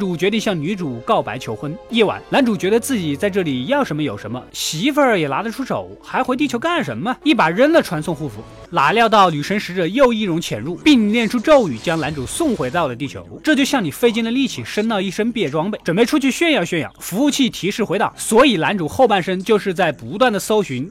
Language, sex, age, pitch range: Chinese, male, 20-39, 175-250 Hz